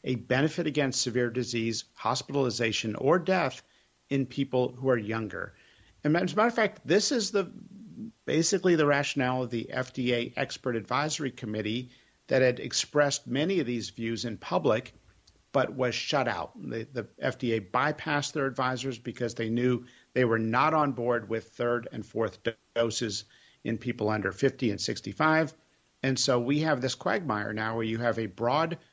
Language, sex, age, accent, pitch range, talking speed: English, male, 50-69, American, 110-140 Hz, 170 wpm